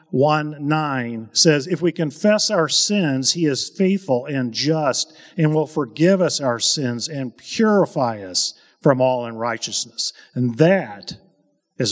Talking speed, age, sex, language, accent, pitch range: 140 wpm, 50-69, male, English, American, 130-180 Hz